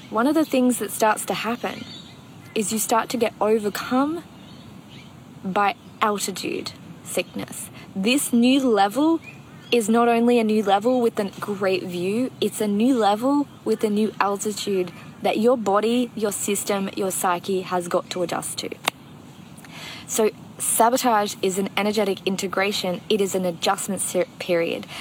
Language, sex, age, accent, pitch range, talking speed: English, female, 20-39, Australian, 195-235 Hz, 145 wpm